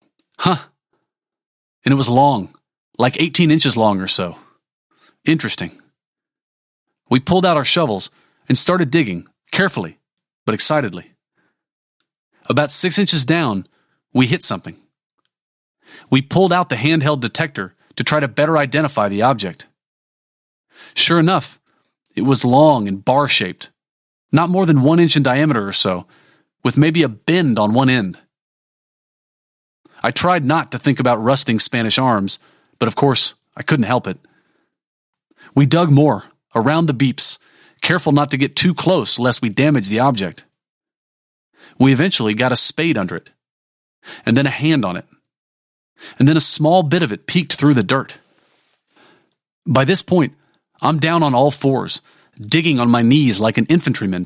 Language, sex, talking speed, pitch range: English, male, 155 wpm, 125-160 Hz